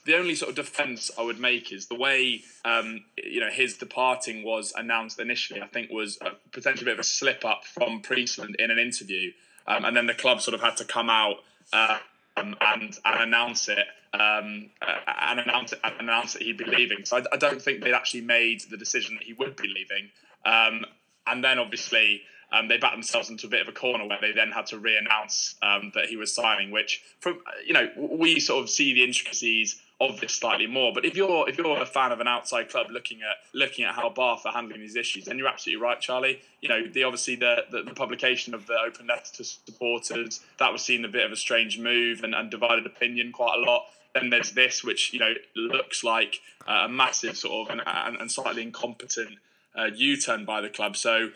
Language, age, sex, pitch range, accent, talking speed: English, 20-39, male, 110-125 Hz, British, 225 wpm